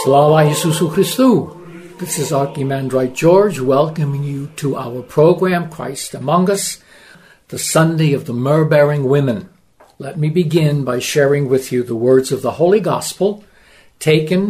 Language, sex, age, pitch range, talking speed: Ukrainian, male, 60-79, 140-180 Hz, 145 wpm